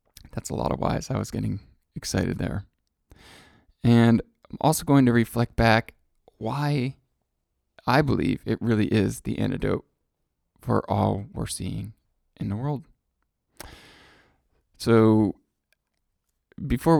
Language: English